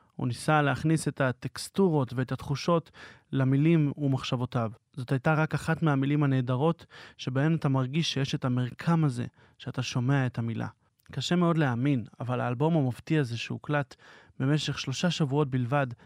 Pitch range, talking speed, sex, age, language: 130-155 Hz, 140 wpm, male, 30-49, Hebrew